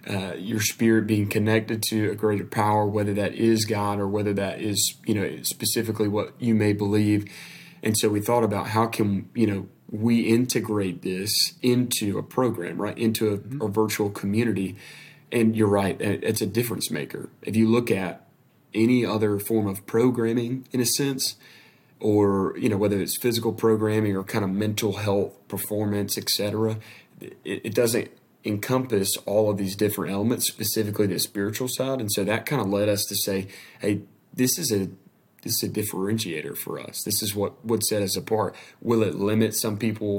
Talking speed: 185 wpm